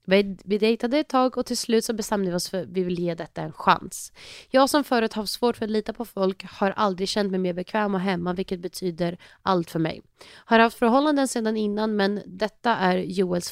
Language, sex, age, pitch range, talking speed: English, female, 30-49, 180-215 Hz, 225 wpm